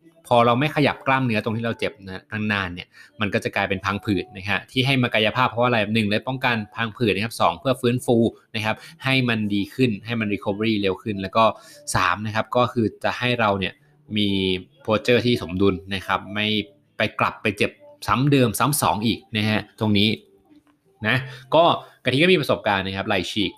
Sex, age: male, 20-39